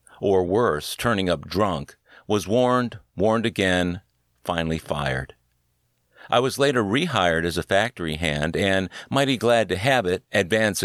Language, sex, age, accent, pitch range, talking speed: English, male, 50-69, American, 75-115 Hz, 145 wpm